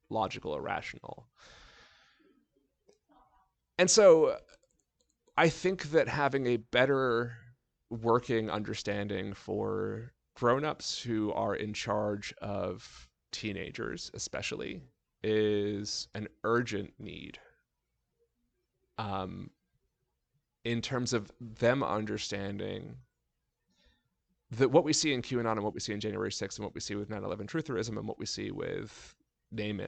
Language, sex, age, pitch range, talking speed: English, male, 30-49, 105-120 Hz, 115 wpm